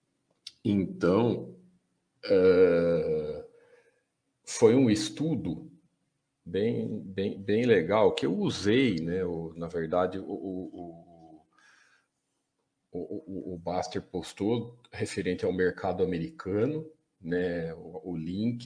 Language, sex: Portuguese, male